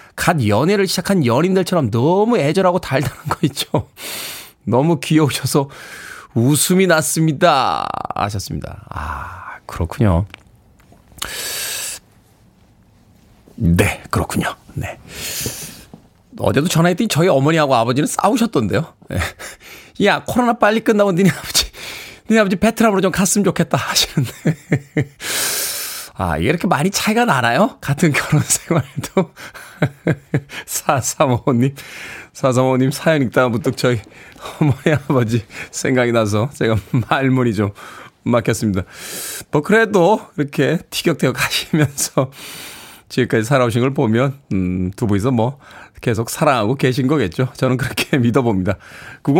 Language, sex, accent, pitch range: Korean, male, native, 125-180 Hz